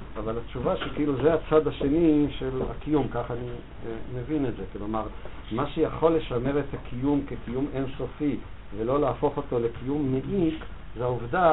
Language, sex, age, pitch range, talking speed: Hebrew, male, 50-69, 110-135 Hz, 150 wpm